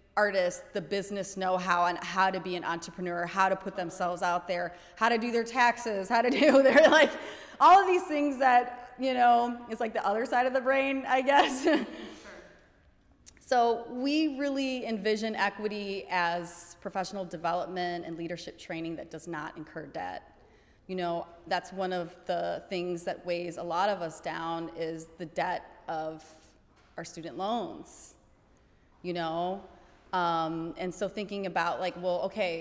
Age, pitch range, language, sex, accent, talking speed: 30-49, 170-230 Hz, English, female, American, 165 wpm